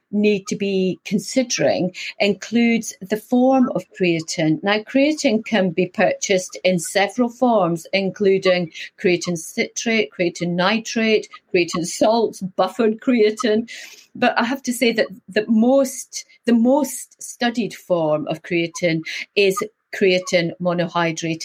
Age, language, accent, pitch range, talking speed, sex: 40-59, English, British, 175-225 Hz, 120 wpm, female